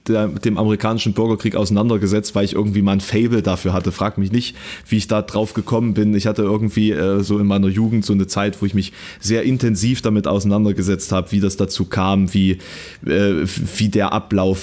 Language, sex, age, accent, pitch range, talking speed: German, male, 20-39, German, 100-110 Hz, 195 wpm